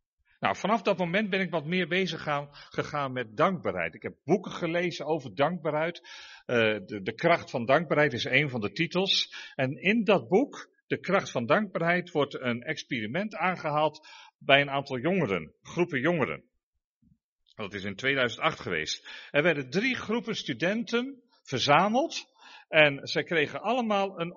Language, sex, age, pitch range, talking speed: Dutch, male, 50-69, 145-230 Hz, 155 wpm